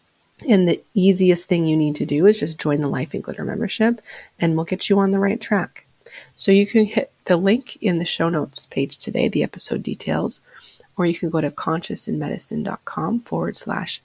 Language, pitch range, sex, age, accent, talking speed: English, 160-205 Hz, female, 30-49, American, 200 wpm